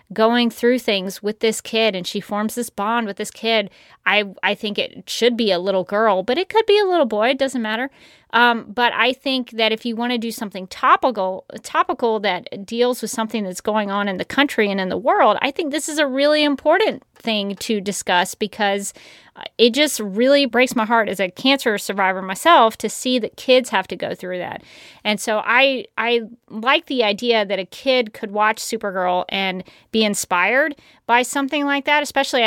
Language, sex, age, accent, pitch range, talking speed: English, female, 30-49, American, 205-250 Hz, 205 wpm